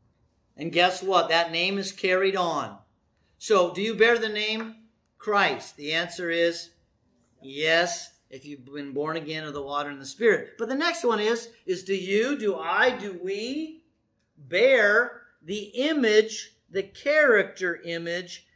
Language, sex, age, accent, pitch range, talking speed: English, male, 50-69, American, 165-215 Hz, 155 wpm